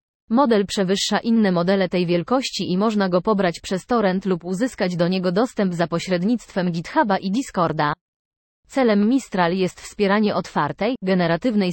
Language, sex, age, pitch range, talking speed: Polish, female, 20-39, 175-215 Hz, 145 wpm